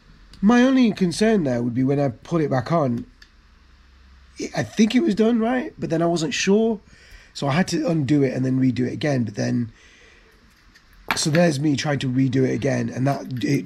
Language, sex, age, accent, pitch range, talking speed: English, male, 30-49, British, 120-145 Hz, 205 wpm